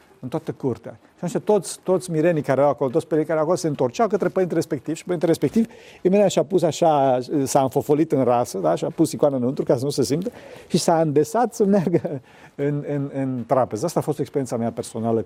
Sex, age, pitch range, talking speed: male, 50-69, 130-170 Hz, 225 wpm